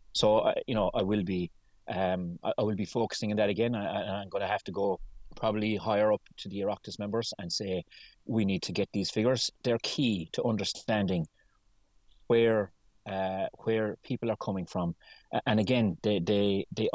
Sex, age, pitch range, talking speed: male, 30-49, 95-110 Hz, 185 wpm